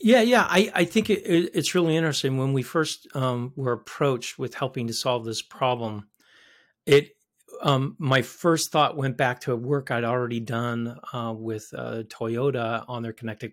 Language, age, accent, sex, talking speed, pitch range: English, 40-59, American, male, 185 wpm, 120-155 Hz